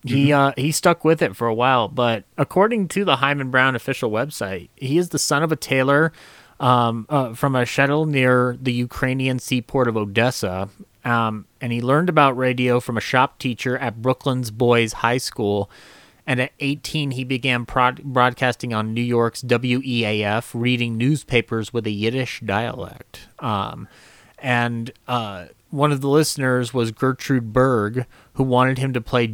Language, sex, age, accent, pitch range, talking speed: English, male, 30-49, American, 115-135 Hz, 170 wpm